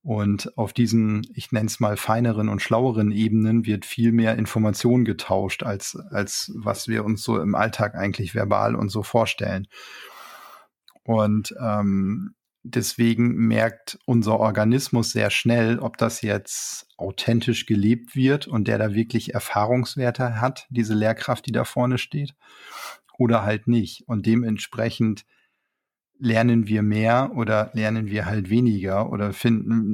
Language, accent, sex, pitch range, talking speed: German, German, male, 105-120 Hz, 140 wpm